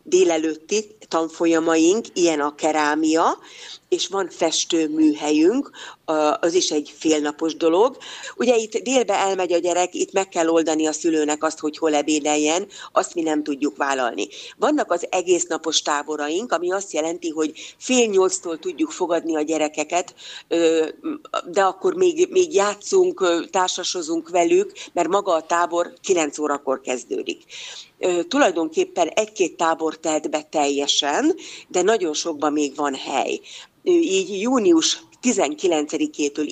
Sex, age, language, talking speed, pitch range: female, 40-59, Hungarian, 130 wpm, 155-250 Hz